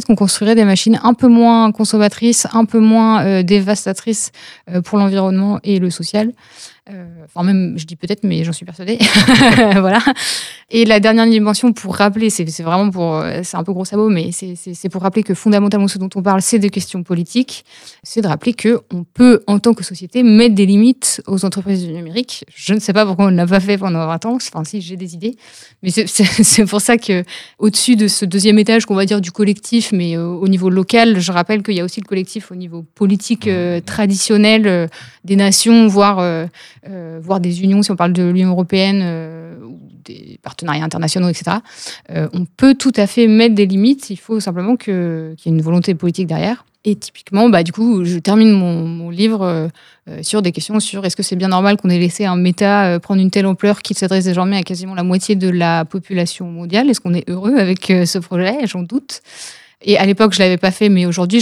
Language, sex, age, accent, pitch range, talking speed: French, female, 30-49, French, 180-215 Hz, 225 wpm